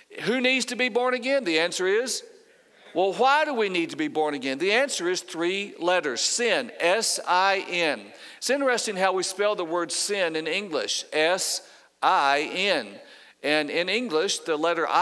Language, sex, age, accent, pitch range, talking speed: English, male, 50-69, American, 165-215 Hz, 165 wpm